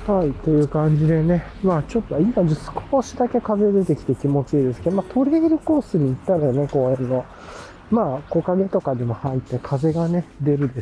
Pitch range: 120-200 Hz